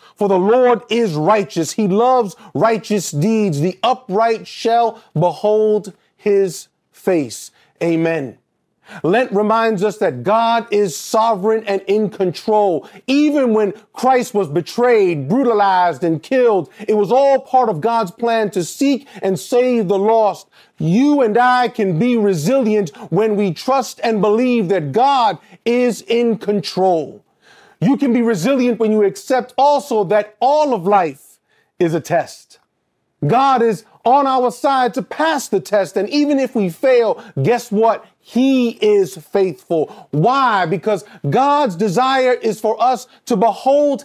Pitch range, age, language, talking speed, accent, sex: 200-255 Hz, 40-59, English, 145 wpm, American, male